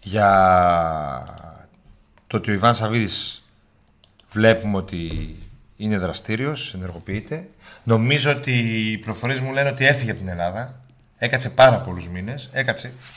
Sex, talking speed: male, 125 wpm